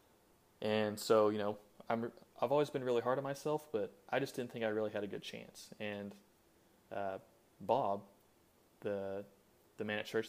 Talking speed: 180 wpm